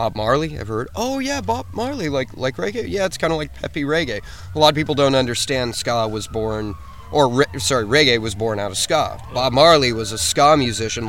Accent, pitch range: American, 110-135 Hz